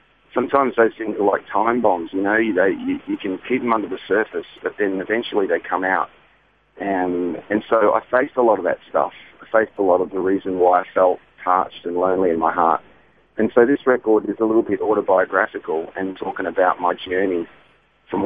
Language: English